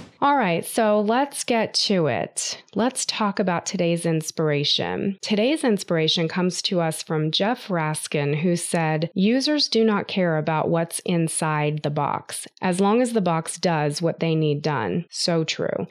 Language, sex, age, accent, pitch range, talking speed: English, female, 20-39, American, 160-210 Hz, 160 wpm